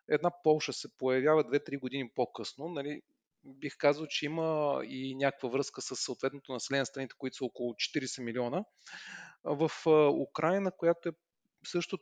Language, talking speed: Bulgarian, 145 wpm